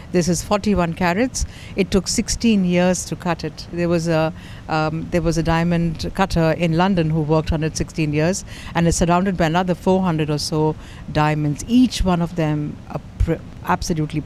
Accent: Indian